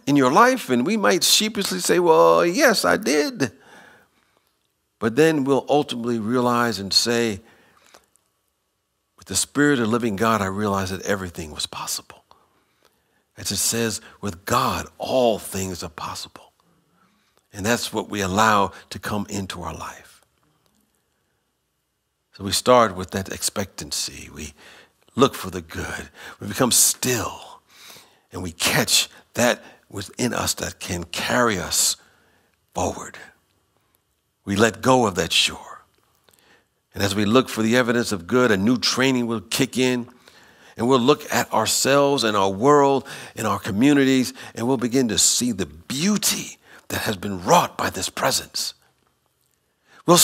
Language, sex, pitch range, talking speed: English, male, 95-130 Hz, 145 wpm